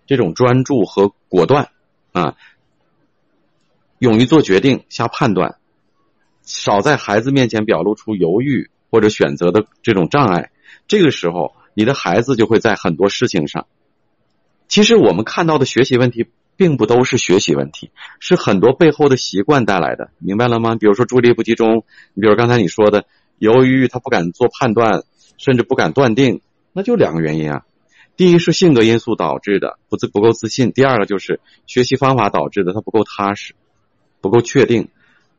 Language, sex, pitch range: Chinese, male, 100-135 Hz